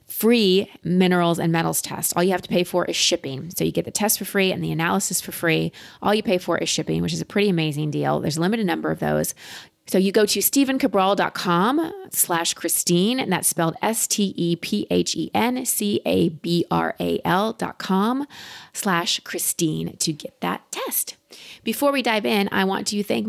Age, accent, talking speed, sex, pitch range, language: 30-49, American, 180 wpm, female, 160-215 Hz, English